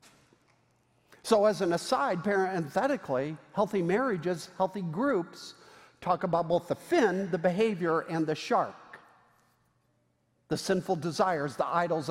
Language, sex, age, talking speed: English, male, 50-69, 120 wpm